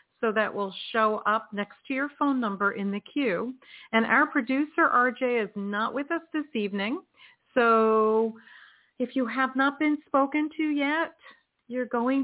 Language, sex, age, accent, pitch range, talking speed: English, female, 40-59, American, 190-255 Hz, 165 wpm